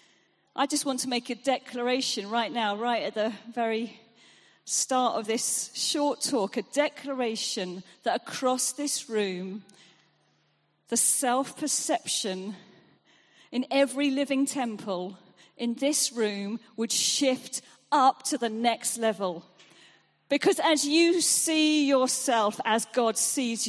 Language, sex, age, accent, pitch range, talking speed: English, female, 40-59, British, 215-290 Hz, 120 wpm